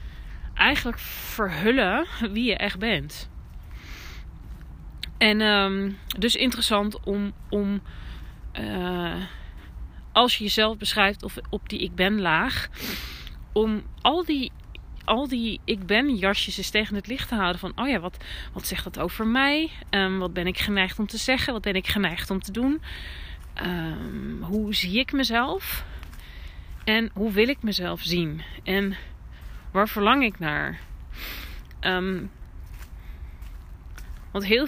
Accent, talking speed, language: Dutch, 130 wpm, Dutch